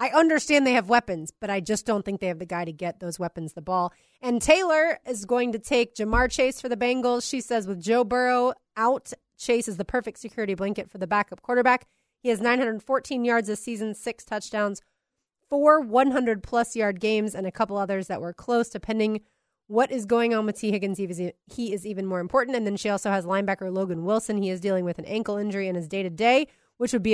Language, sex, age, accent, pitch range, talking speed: English, female, 30-49, American, 200-245 Hz, 220 wpm